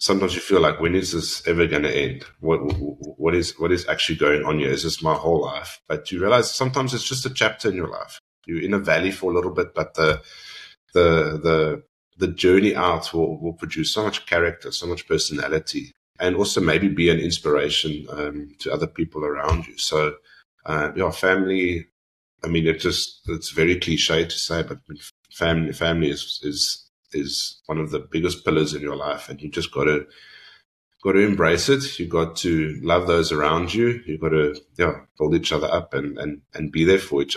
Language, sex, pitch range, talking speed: English, male, 75-95 Hz, 210 wpm